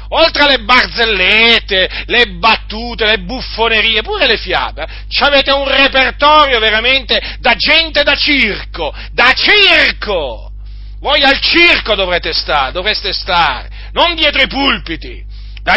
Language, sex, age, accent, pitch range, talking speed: Italian, male, 40-59, native, 100-170 Hz, 120 wpm